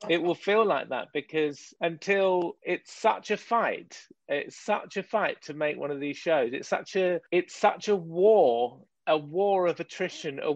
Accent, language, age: British, English, 40-59